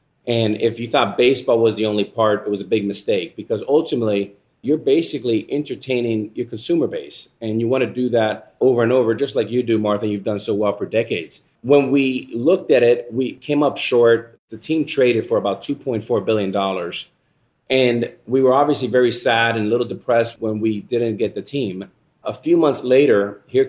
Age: 30-49